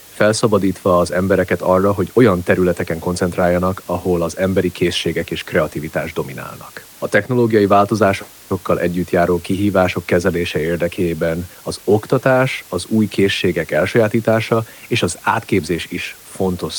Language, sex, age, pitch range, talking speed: Hungarian, male, 30-49, 85-110 Hz, 120 wpm